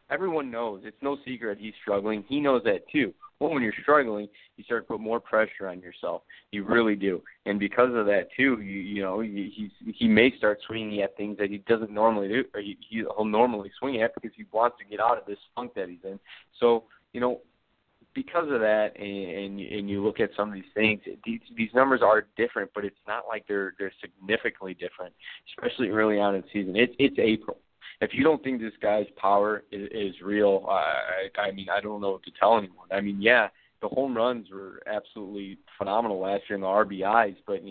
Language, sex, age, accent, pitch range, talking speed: English, male, 20-39, American, 100-115 Hz, 220 wpm